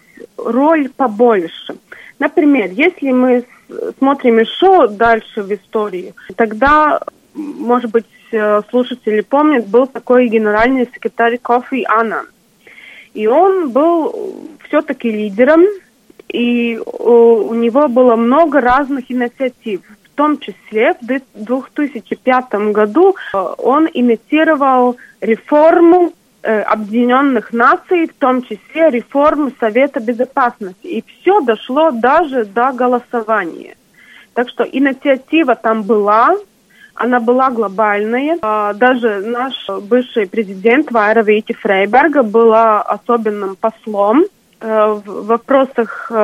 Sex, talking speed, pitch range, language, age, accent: female, 100 wpm, 225-290 Hz, Russian, 20-39, native